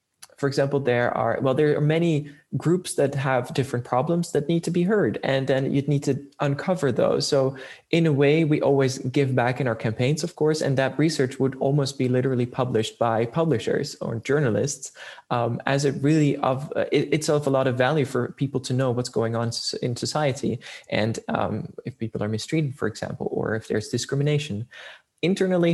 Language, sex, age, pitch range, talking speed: English, male, 20-39, 125-150 Hz, 195 wpm